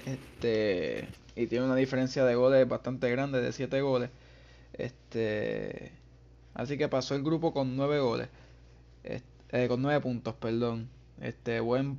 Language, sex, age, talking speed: Spanish, male, 20-39, 145 wpm